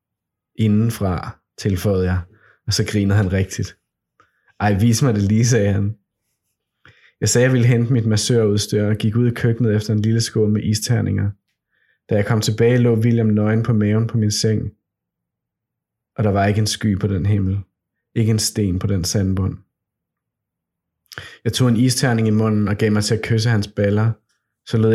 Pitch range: 105-115 Hz